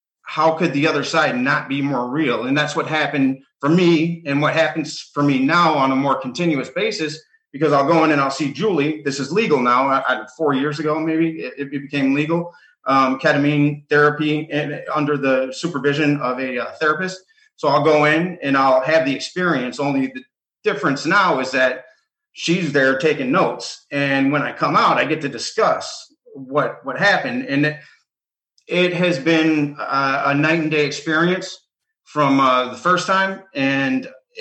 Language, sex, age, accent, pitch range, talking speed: English, male, 30-49, American, 140-170 Hz, 185 wpm